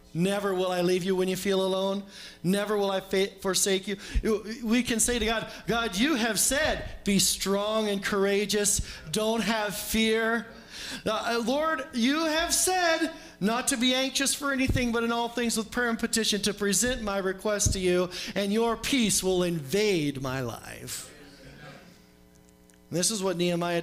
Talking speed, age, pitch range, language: 165 wpm, 40-59, 185-235 Hz, English